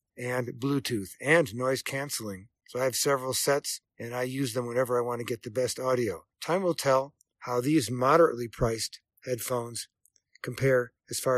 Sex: male